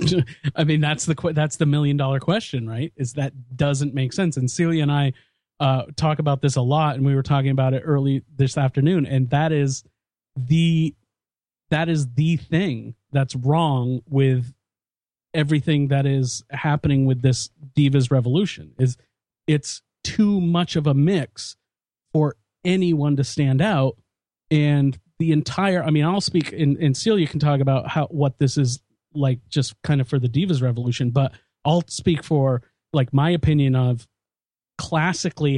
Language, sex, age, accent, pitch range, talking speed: English, male, 40-59, American, 130-155 Hz, 170 wpm